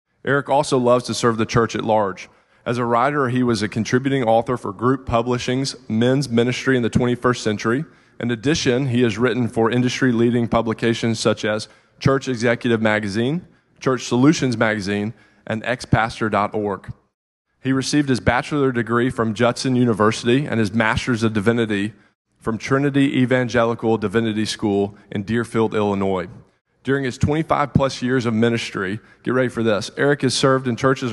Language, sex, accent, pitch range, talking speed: English, male, American, 110-130 Hz, 155 wpm